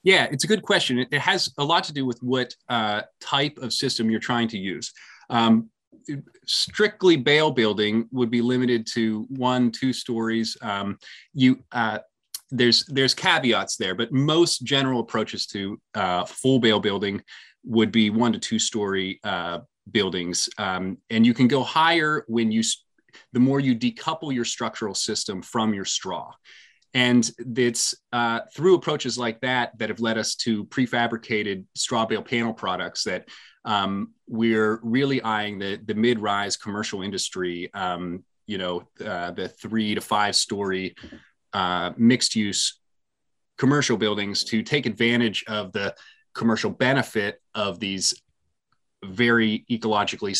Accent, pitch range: American, 105-130 Hz